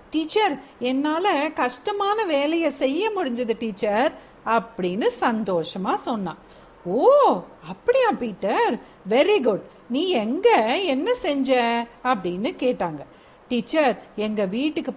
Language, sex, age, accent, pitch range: Tamil, female, 50-69, native, 230-315 Hz